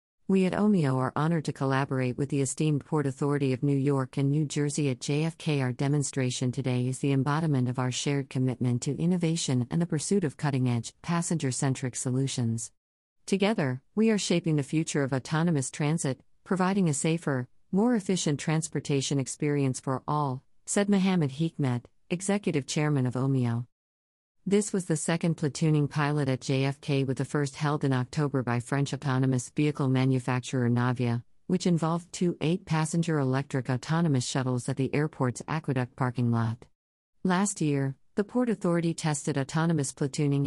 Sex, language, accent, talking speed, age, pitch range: female, English, American, 155 wpm, 50-69, 130-160 Hz